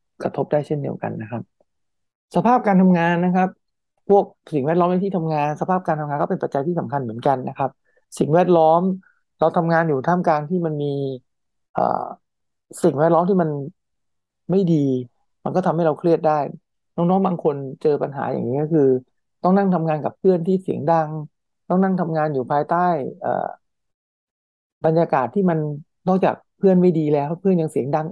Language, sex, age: English, male, 60-79